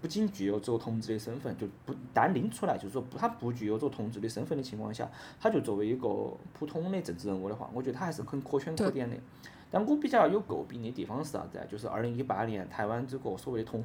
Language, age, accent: Chinese, 20-39, native